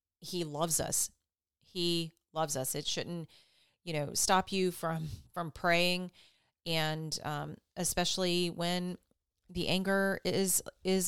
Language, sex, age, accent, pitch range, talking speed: English, female, 30-49, American, 150-180 Hz, 125 wpm